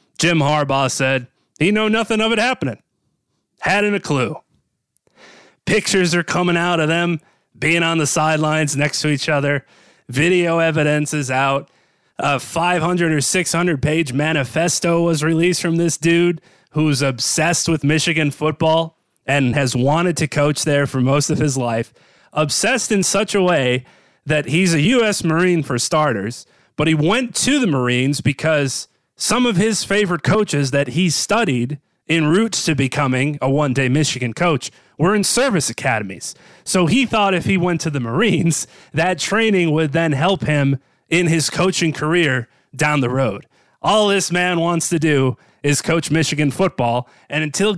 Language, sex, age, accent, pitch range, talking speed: English, male, 30-49, American, 140-175 Hz, 165 wpm